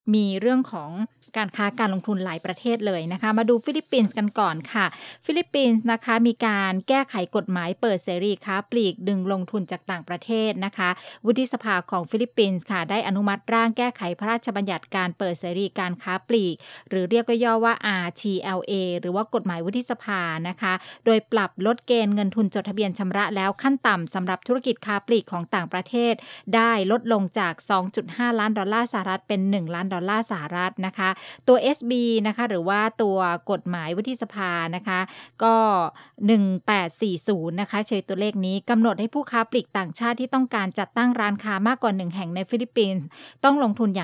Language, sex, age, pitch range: English, female, 20-39, 185-230 Hz